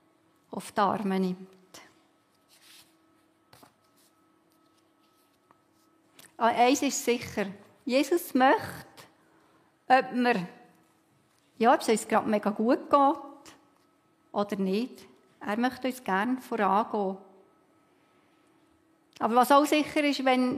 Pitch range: 210-280 Hz